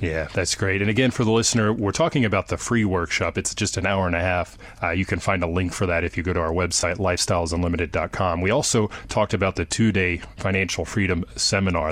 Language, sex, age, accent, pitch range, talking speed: English, male, 30-49, American, 90-105 Hz, 225 wpm